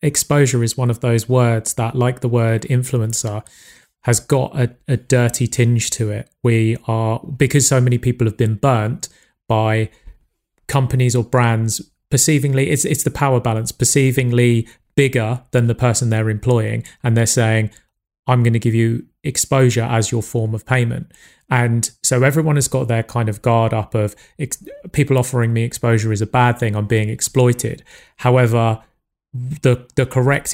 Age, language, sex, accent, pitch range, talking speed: 30-49, English, male, British, 115-125 Hz, 165 wpm